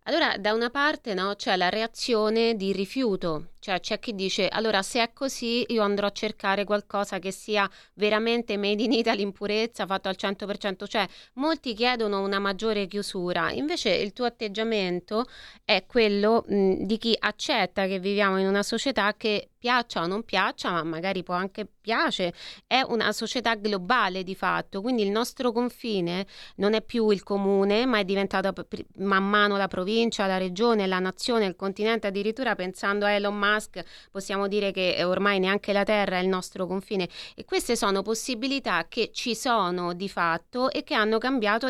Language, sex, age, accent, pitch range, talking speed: Italian, female, 20-39, native, 195-225 Hz, 180 wpm